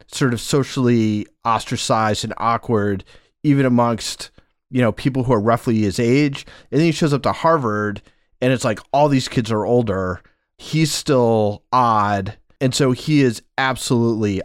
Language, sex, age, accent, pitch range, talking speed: English, male, 30-49, American, 110-145 Hz, 160 wpm